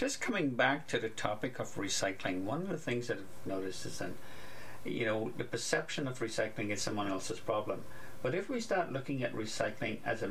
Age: 60-79